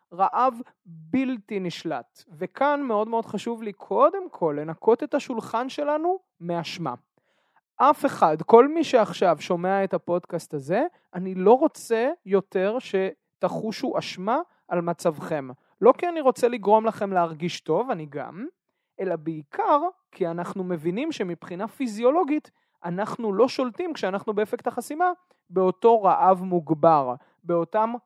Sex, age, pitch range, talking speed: male, 30-49, 175-235 Hz, 125 wpm